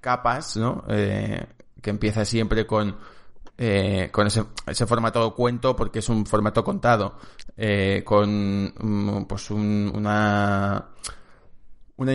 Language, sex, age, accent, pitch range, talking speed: Spanish, male, 20-39, Spanish, 105-120 Hz, 125 wpm